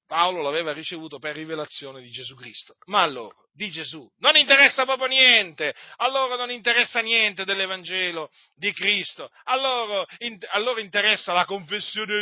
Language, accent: Italian, native